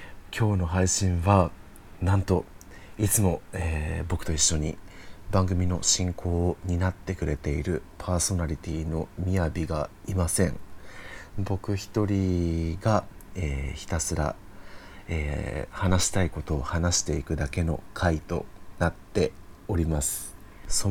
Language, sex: Japanese, male